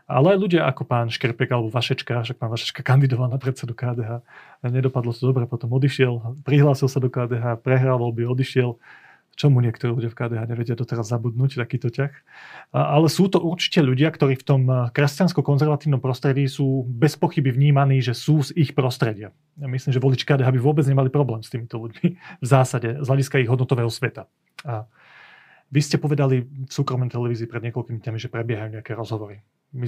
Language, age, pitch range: Slovak, 30-49, 120-140 Hz